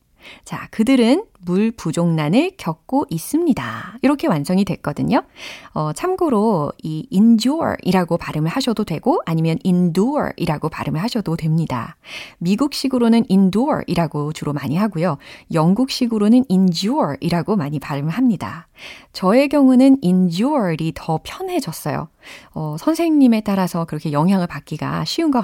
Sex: female